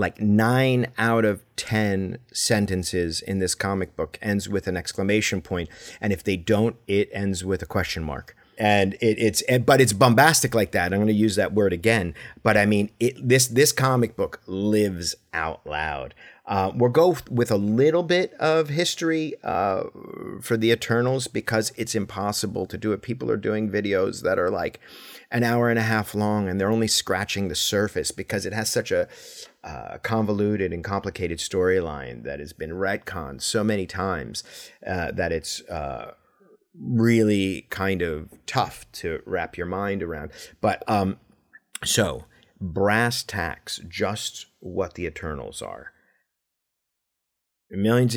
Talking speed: 160 wpm